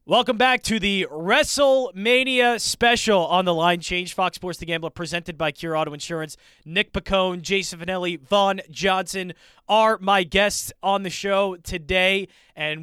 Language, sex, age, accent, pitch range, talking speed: English, male, 20-39, American, 145-195 Hz, 155 wpm